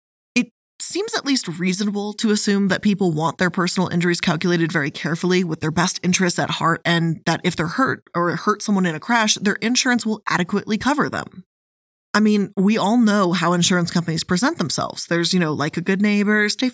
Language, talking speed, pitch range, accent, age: English, 200 wpm, 170-220 Hz, American, 20-39